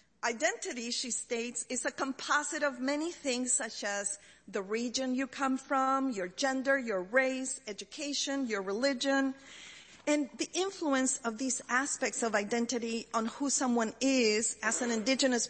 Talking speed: 145 wpm